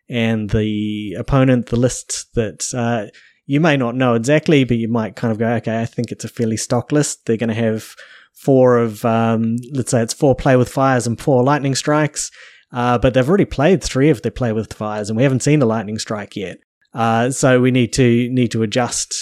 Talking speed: 220 wpm